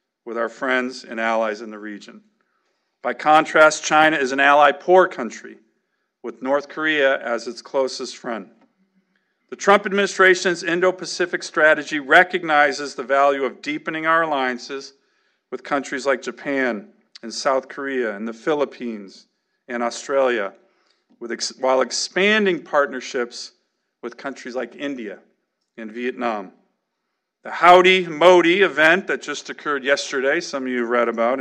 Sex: male